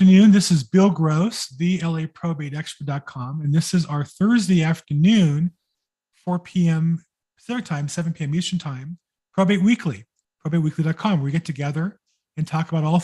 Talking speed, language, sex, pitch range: 145 wpm, English, male, 150-185 Hz